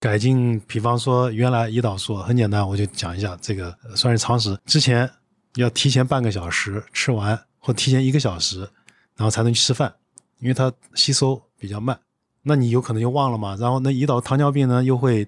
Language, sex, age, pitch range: Chinese, male, 20-39, 110-140 Hz